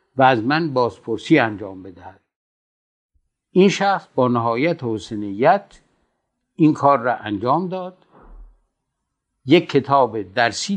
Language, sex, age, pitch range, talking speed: English, male, 60-79, 115-170 Hz, 105 wpm